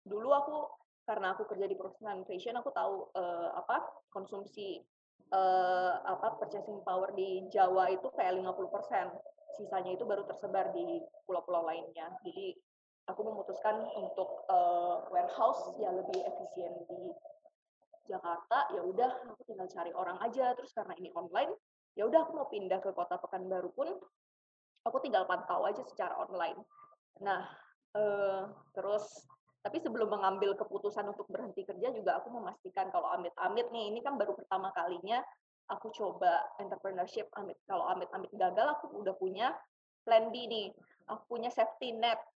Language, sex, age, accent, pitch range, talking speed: Indonesian, female, 20-39, native, 190-275 Hz, 150 wpm